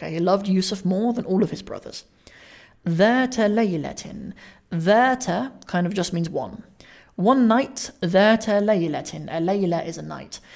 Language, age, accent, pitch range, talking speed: English, 30-49, British, 170-215 Hz, 150 wpm